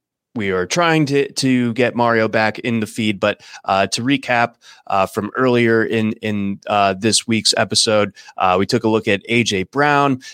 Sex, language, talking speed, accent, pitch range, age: male, English, 185 wpm, American, 100-115 Hz, 20-39